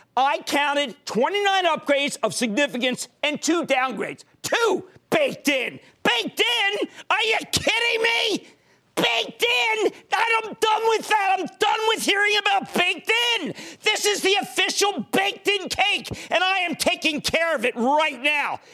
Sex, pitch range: male, 255-390 Hz